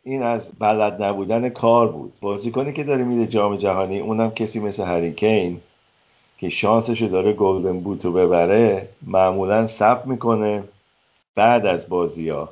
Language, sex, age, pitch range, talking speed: Persian, male, 50-69, 90-115 Hz, 140 wpm